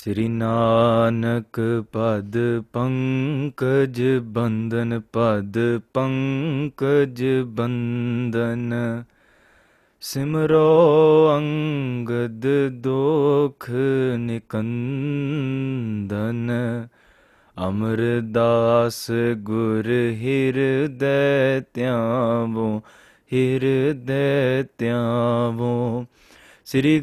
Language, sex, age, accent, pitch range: English, male, 20-39, Indian, 115-135 Hz